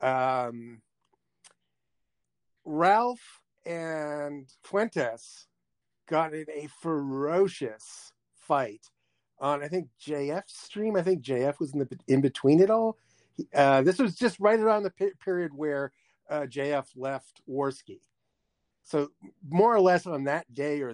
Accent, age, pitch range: American, 50-69, 130-185 Hz